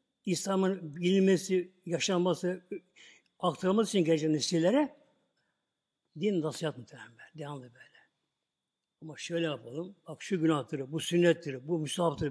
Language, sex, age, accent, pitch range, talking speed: Turkish, male, 60-79, native, 155-220 Hz, 100 wpm